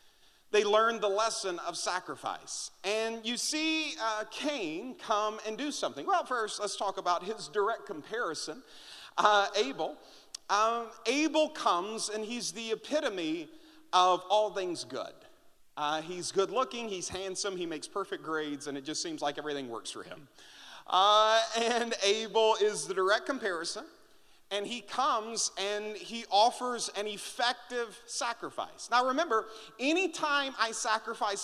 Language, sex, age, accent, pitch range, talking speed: English, male, 40-59, American, 185-255 Hz, 145 wpm